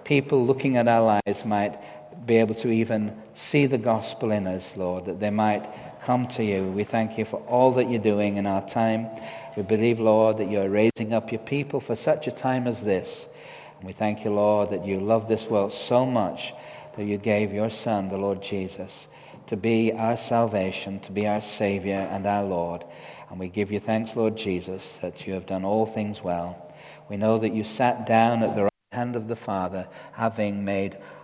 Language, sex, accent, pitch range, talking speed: English, male, British, 100-115 Hz, 205 wpm